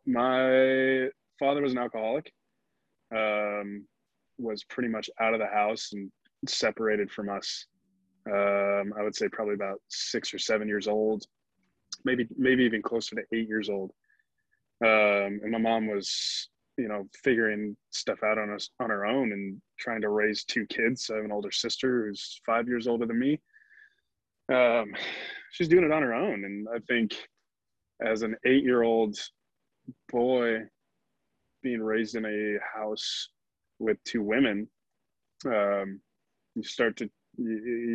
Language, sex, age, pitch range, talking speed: English, male, 20-39, 105-120 Hz, 155 wpm